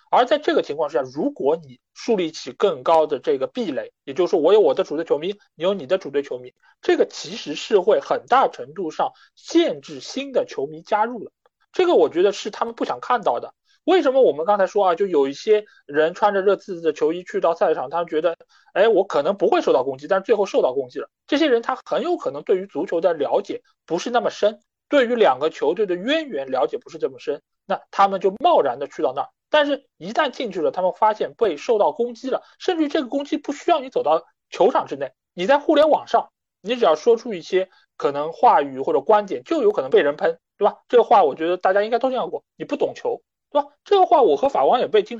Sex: male